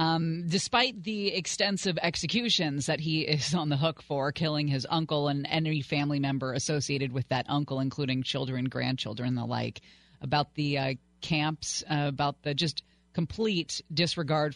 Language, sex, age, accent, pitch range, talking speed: English, female, 30-49, American, 135-175 Hz, 155 wpm